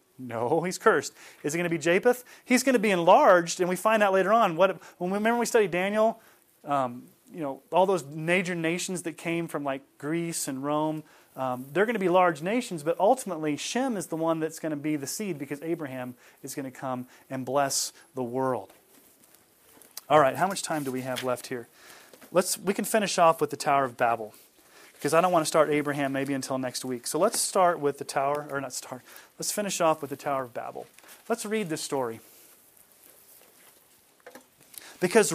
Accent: American